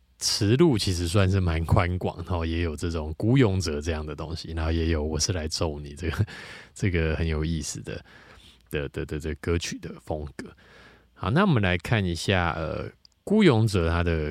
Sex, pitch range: male, 85-120 Hz